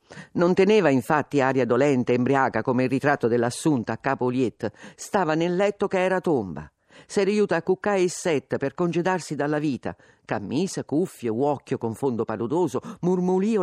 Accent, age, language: native, 50-69, Italian